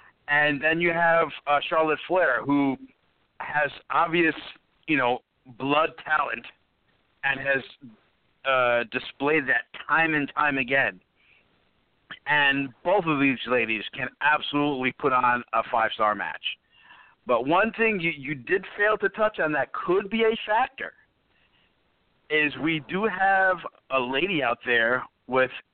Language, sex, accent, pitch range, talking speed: English, male, American, 135-195 Hz, 140 wpm